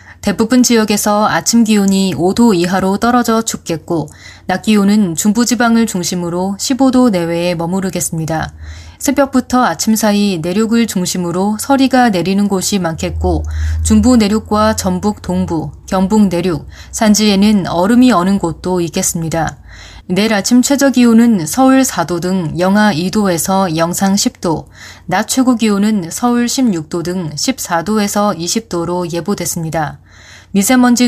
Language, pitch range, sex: Korean, 170-225 Hz, female